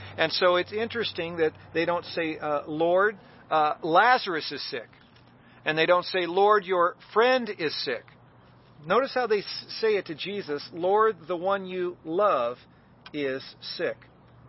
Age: 40-59